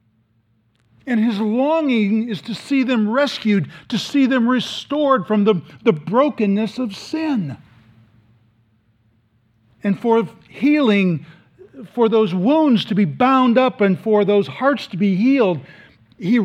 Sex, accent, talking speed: male, American, 130 wpm